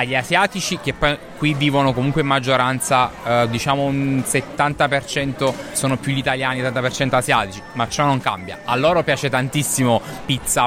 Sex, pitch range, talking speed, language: male, 125-145 Hz, 165 wpm, Italian